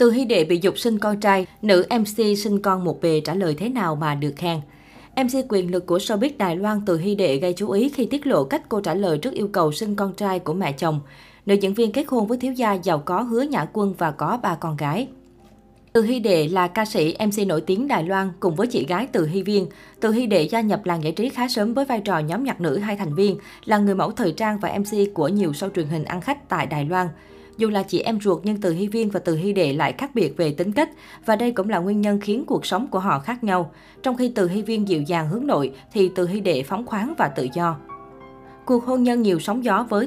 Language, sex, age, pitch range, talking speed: Vietnamese, female, 20-39, 175-225 Hz, 270 wpm